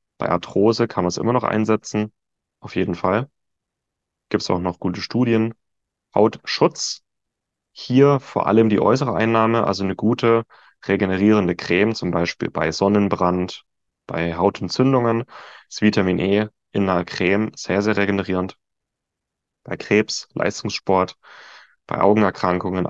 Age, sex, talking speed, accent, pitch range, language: 30-49, male, 125 wpm, German, 90-110 Hz, German